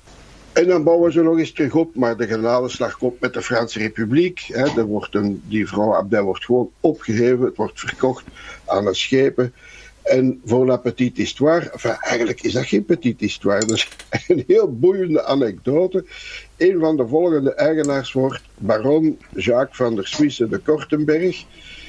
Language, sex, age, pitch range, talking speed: Dutch, male, 60-79, 115-165 Hz, 175 wpm